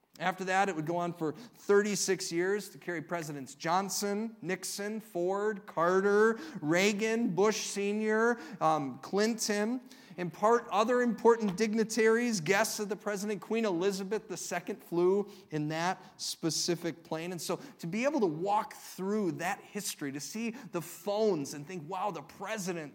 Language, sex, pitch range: English, male, 185-250 Hz